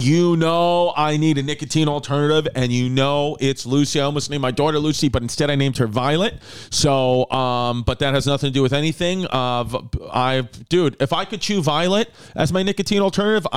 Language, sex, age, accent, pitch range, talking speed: English, male, 40-59, American, 130-160 Hz, 205 wpm